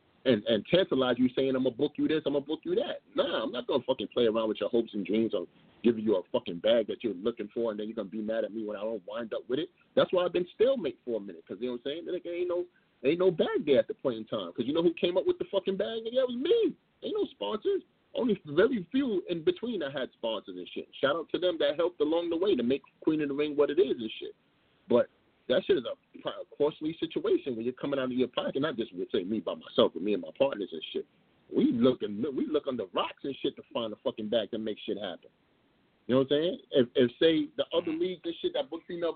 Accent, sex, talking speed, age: American, male, 295 wpm, 30-49